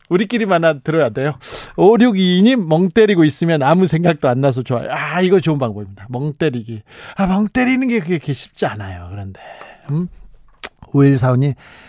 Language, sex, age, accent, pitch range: Korean, male, 40-59, native, 135-195 Hz